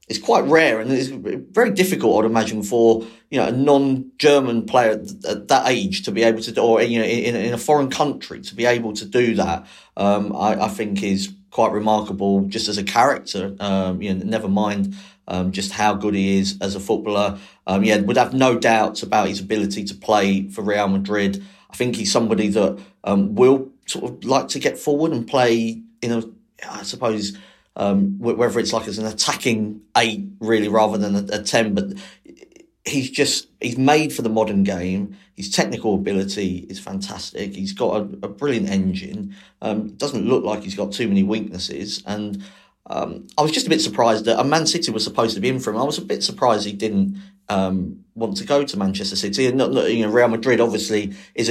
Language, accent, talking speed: English, British, 205 wpm